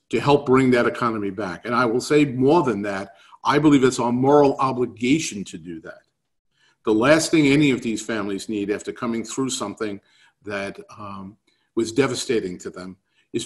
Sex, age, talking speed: male, 50-69, 185 wpm